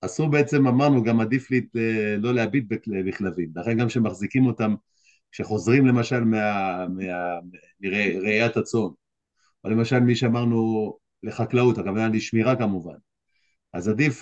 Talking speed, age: 115 wpm, 50-69